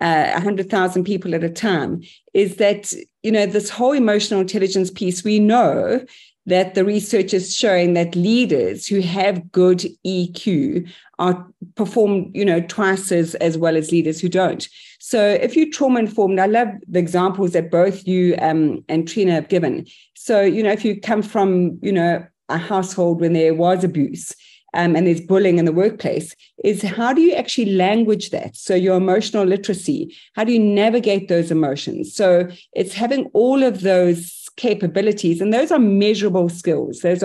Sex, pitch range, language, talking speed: female, 180-215 Hz, English, 175 wpm